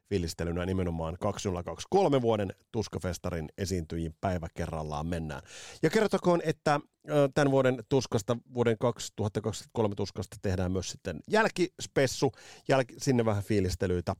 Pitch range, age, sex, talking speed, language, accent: 90-130 Hz, 30-49, male, 105 wpm, Finnish, native